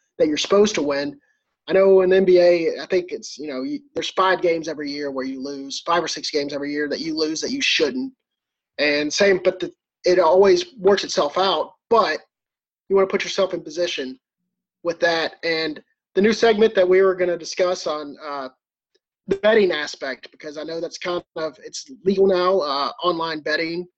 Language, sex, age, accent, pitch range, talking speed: English, male, 30-49, American, 160-195 Hz, 205 wpm